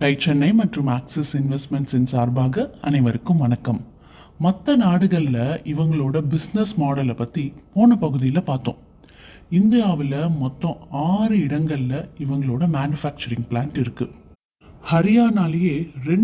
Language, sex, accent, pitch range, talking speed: Tamil, male, native, 135-180 Hz, 95 wpm